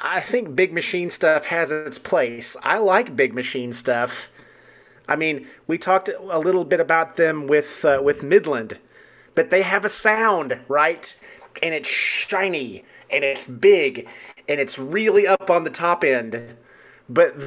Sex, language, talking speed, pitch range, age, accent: male, English, 160 wpm, 135-215 Hz, 30-49, American